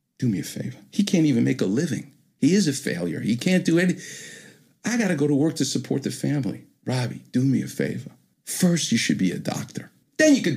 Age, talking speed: 50-69, 240 wpm